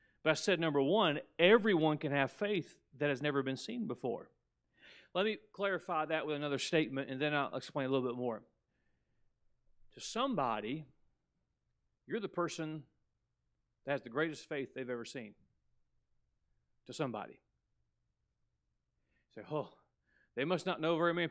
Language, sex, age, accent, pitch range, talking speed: English, male, 40-59, American, 125-160 Hz, 150 wpm